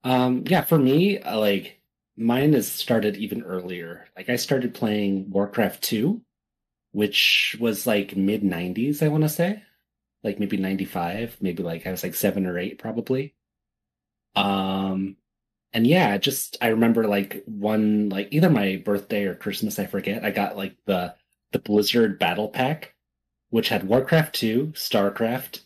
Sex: male